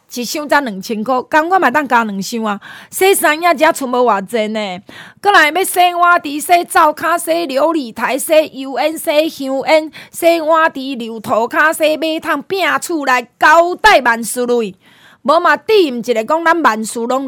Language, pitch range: Chinese, 240-335 Hz